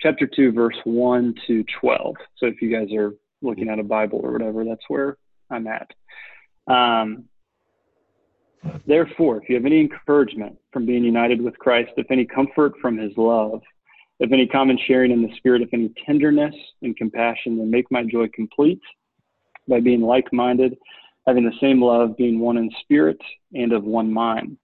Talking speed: 175 wpm